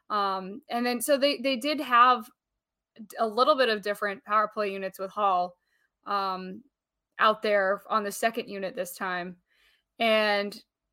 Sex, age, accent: female, 20-39, American